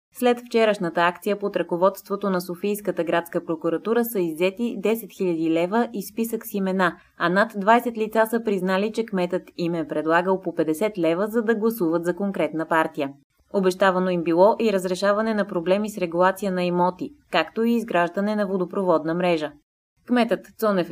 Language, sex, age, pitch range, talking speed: Bulgarian, female, 20-39, 175-215 Hz, 165 wpm